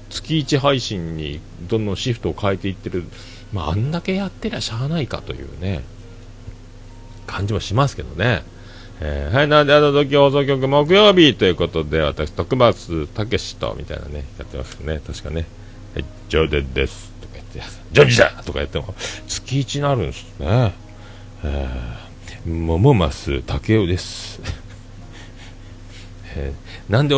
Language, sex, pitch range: Japanese, male, 85-115 Hz